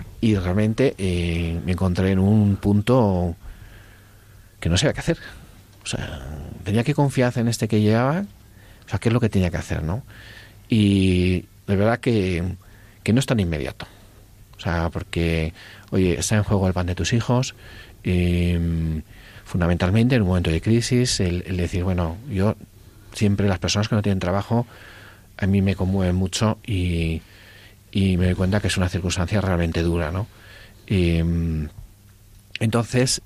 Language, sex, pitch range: Spanish, male, 90-105 Hz